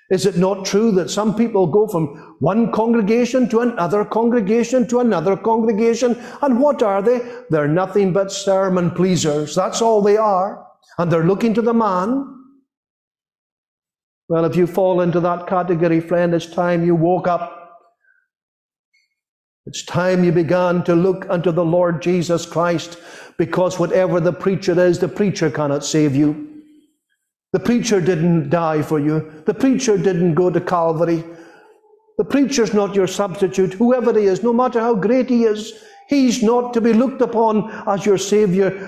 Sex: male